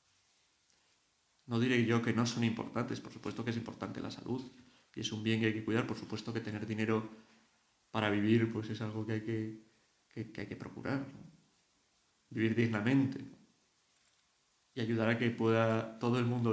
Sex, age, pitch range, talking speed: male, 40-59, 115-130 Hz, 190 wpm